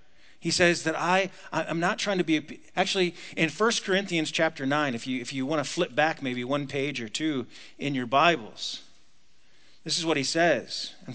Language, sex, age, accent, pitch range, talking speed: English, male, 40-59, American, 150-185 Hz, 195 wpm